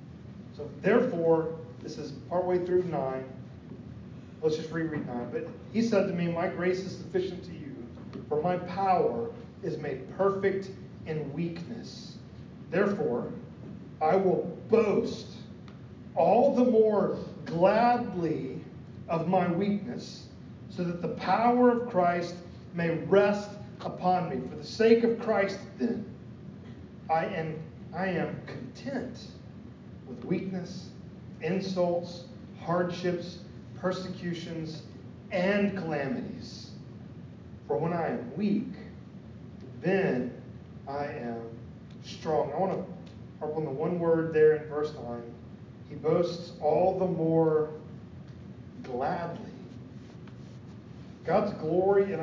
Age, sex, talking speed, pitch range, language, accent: 40-59, male, 115 wpm, 150-185 Hz, English, American